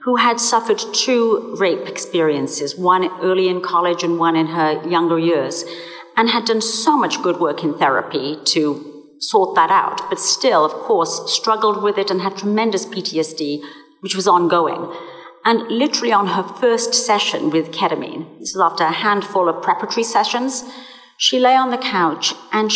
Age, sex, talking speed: 50-69, female, 170 wpm